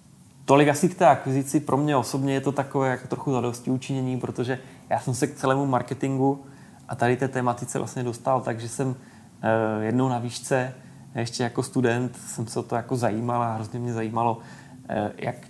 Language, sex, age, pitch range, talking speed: Slovak, male, 20-39, 115-130 Hz, 180 wpm